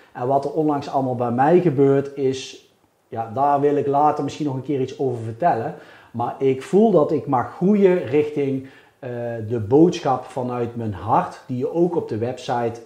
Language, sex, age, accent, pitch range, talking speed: Dutch, male, 40-59, Dutch, 120-155 Hz, 190 wpm